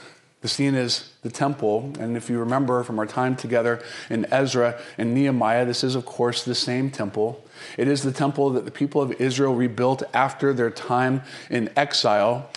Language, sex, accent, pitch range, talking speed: English, male, American, 120-145 Hz, 185 wpm